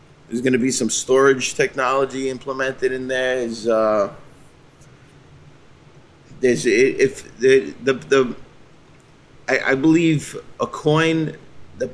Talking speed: 85 wpm